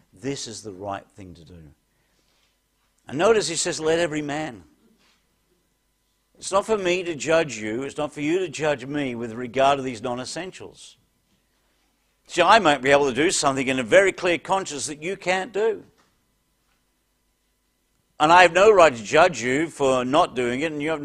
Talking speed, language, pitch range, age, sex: 185 wpm, English, 125-175 Hz, 50-69, male